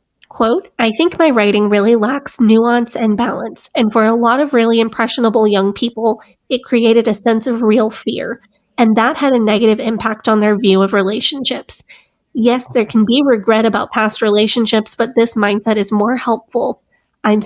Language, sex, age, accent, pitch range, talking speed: English, female, 30-49, American, 210-235 Hz, 180 wpm